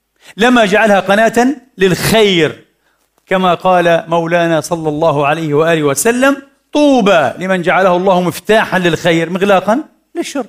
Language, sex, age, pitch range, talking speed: Arabic, male, 40-59, 170-225 Hz, 115 wpm